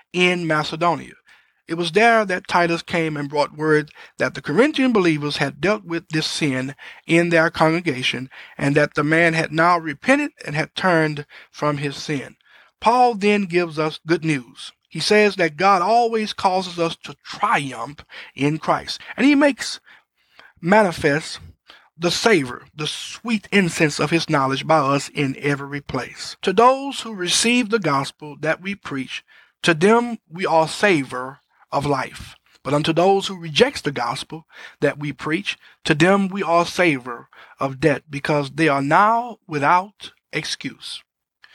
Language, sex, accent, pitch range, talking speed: English, male, American, 145-195 Hz, 155 wpm